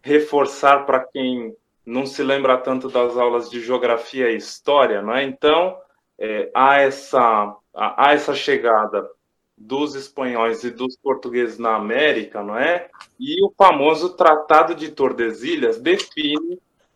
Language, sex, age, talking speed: Portuguese, male, 20-39, 135 wpm